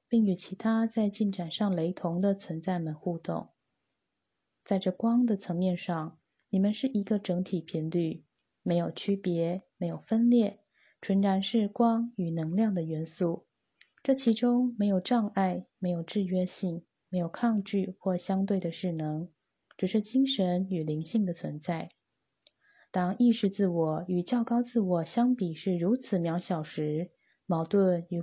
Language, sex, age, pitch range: Chinese, female, 20-39, 175-215 Hz